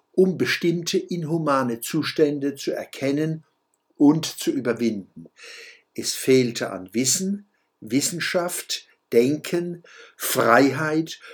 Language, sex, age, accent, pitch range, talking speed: German, male, 60-79, German, 125-170 Hz, 85 wpm